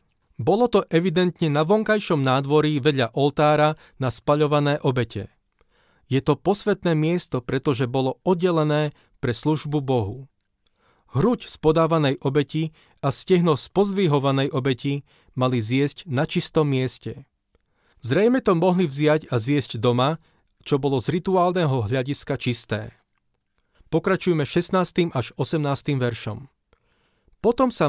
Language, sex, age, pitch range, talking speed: Slovak, male, 40-59, 130-165 Hz, 120 wpm